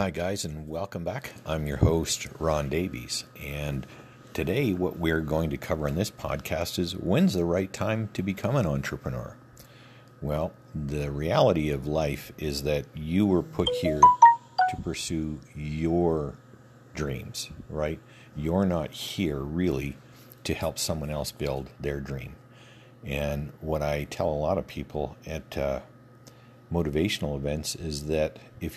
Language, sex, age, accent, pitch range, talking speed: English, male, 50-69, American, 75-90 Hz, 150 wpm